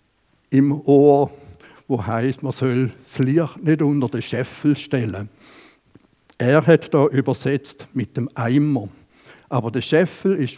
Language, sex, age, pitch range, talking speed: German, male, 70-89, 130-160 Hz, 135 wpm